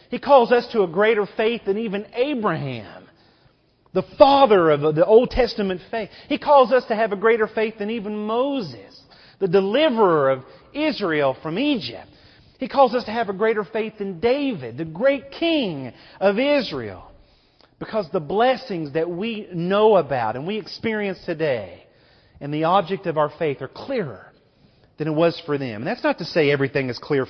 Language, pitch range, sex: English, 150-225 Hz, male